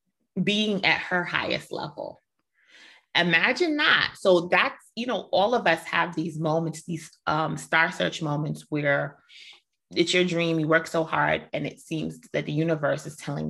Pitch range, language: 155-185 Hz, English